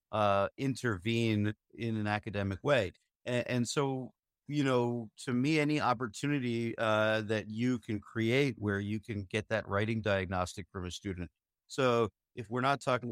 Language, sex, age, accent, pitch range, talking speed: English, male, 50-69, American, 100-125 Hz, 160 wpm